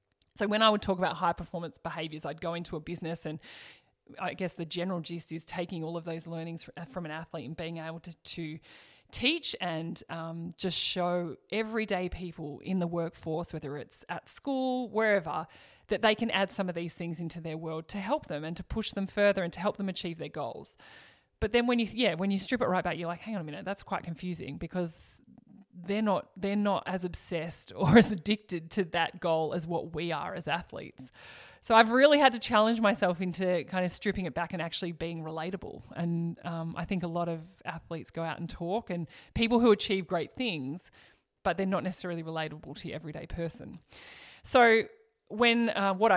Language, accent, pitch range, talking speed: English, Australian, 165-200 Hz, 205 wpm